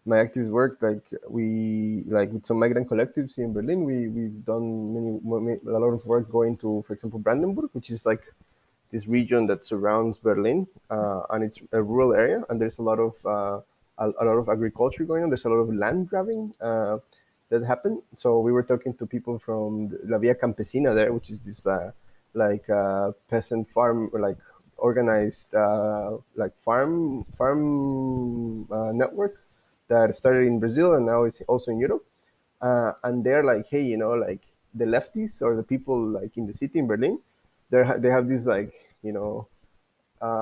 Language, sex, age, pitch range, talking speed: English, male, 20-39, 110-125 Hz, 190 wpm